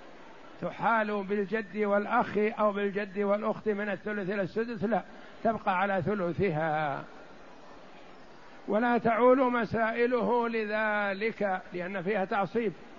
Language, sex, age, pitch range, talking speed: Arabic, male, 60-79, 190-215 Hz, 95 wpm